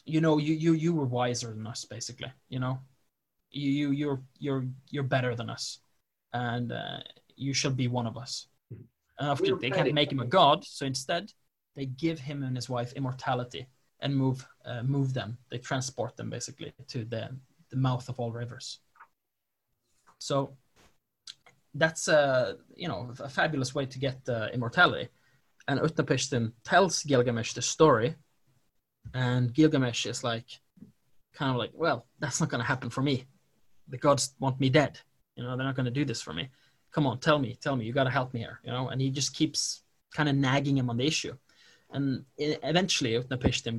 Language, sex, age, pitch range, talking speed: English, male, 20-39, 125-145 Hz, 190 wpm